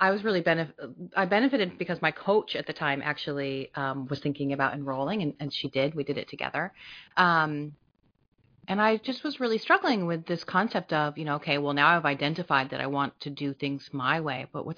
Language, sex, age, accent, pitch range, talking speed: English, female, 30-49, American, 145-190 Hz, 220 wpm